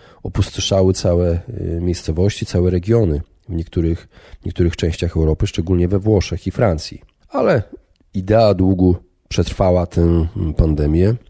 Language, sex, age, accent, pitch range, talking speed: Polish, male, 40-59, native, 85-105 Hz, 115 wpm